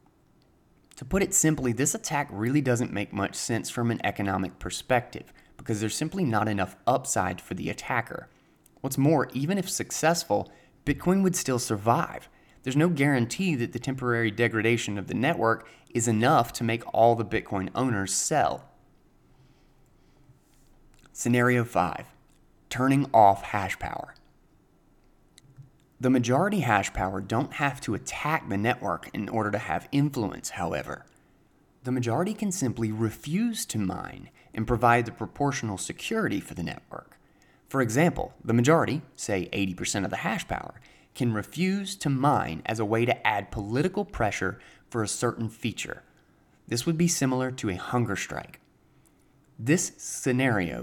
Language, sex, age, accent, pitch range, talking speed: English, male, 30-49, American, 110-140 Hz, 145 wpm